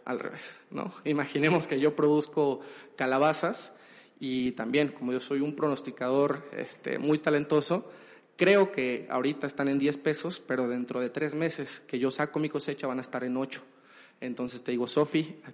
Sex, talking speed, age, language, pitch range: male, 175 wpm, 30-49, Spanish, 130-160 Hz